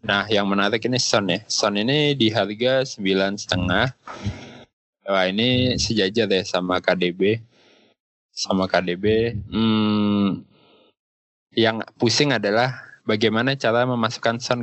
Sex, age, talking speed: male, 20-39, 120 wpm